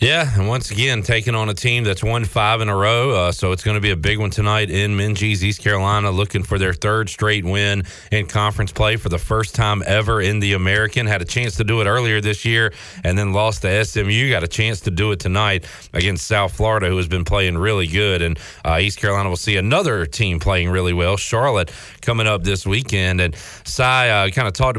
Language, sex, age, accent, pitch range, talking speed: English, male, 40-59, American, 95-120 Hz, 235 wpm